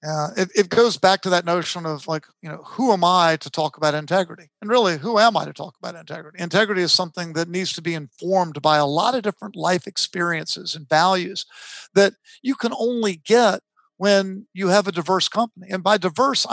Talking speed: 215 wpm